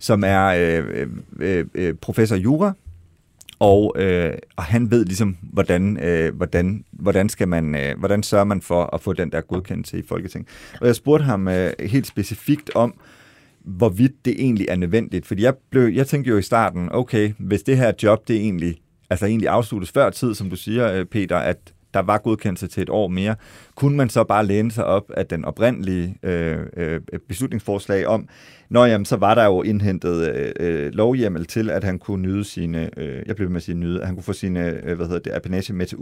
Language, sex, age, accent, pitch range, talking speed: Danish, male, 30-49, native, 90-115 Hz, 200 wpm